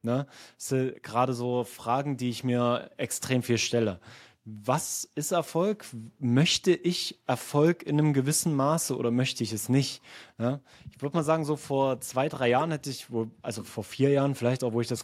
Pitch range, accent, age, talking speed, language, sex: 115-140 Hz, German, 20-39, 195 wpm, German, male